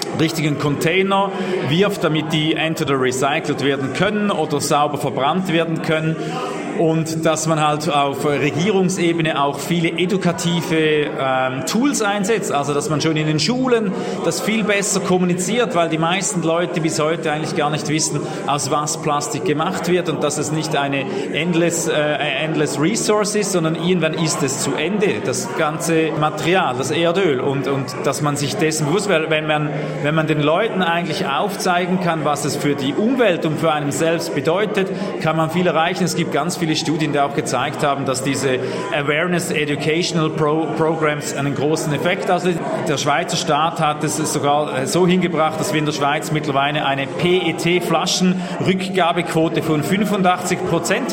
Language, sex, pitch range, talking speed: German, male, 150-180 Hz, 170 wpm